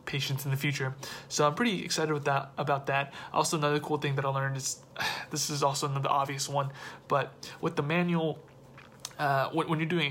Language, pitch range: English, 145-170 Hz